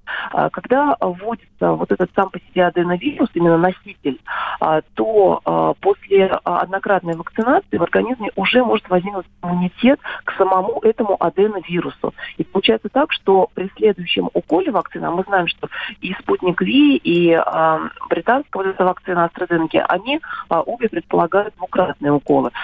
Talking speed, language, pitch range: 130 wpm, Russian, 170-220 Hz